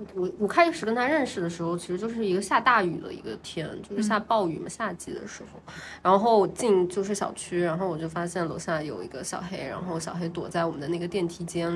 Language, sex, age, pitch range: Chinese, female, 20-39, 175-215 Hz